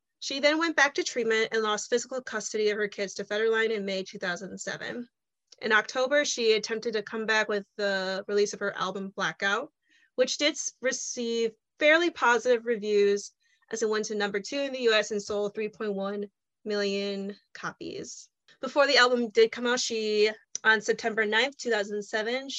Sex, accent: female, American